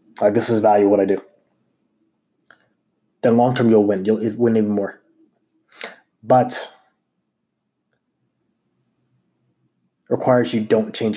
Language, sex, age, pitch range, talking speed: English, male, 20-39, 105-125 Hz, 105 wpm